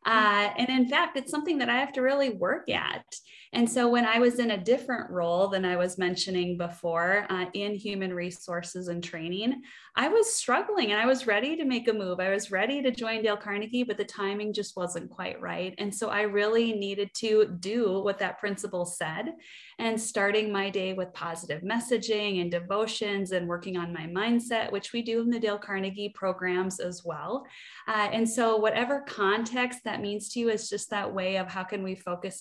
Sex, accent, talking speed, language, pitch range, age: female, American, 205 wpm, English, 185-235 Hz, 20-39